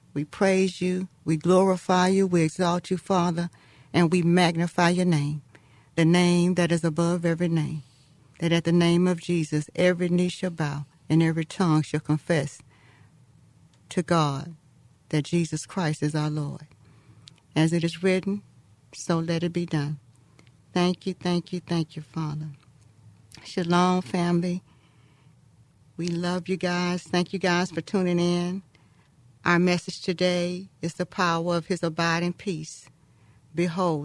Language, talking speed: English, 150 wpm